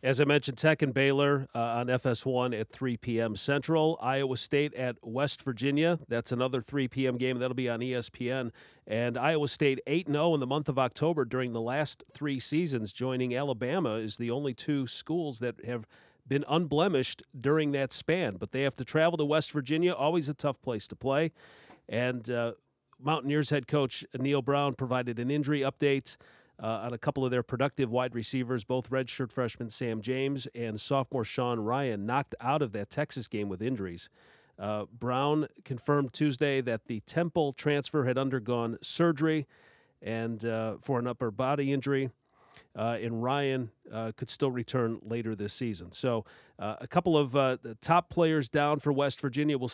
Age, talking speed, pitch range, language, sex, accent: 40-59, 180 wpm, 120-145 Hz, English, male, American